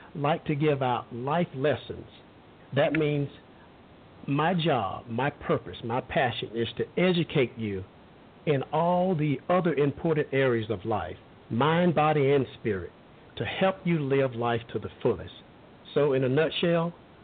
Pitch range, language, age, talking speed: 120-155 Hz, English, 50-69, 145 wpm